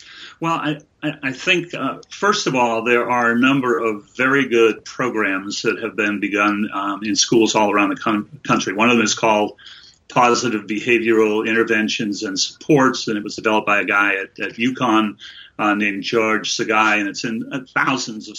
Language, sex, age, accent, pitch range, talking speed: English, male, 40-59, American, 110-145 Hz, 185 wpm